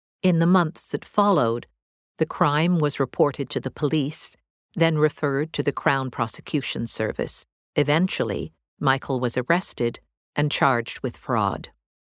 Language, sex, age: English, female, 50-69